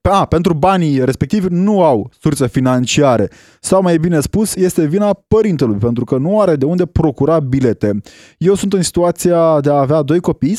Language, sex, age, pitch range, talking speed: Romanian, male, 20-39, 140-180 Hz, 180 wpm